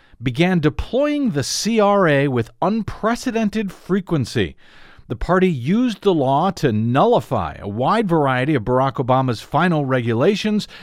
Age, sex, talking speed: 50-69, male, 120 wpm